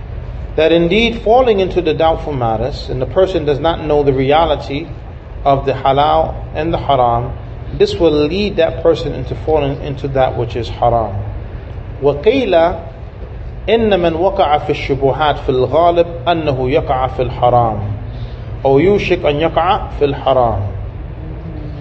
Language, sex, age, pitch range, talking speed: English, male, 30-49, 120-170 Hz, 100 wpm